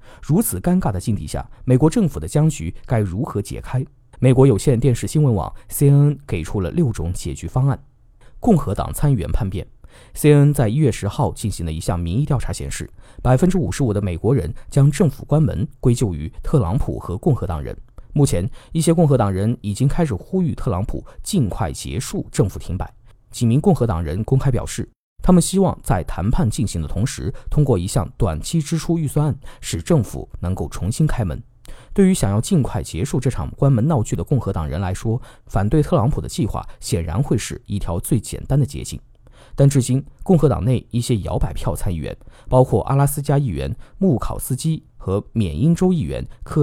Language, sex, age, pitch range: Chinese, male, 20-39, 100-145 Hz